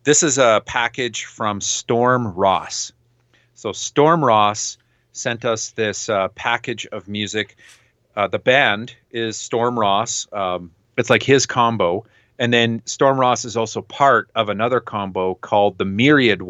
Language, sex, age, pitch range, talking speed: English, male, 40-59, 105-125 Hz, 150 wpm